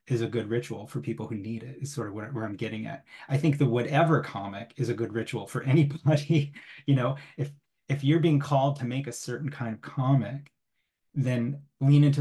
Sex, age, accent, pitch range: male, 30-49, American, 115-140 Hz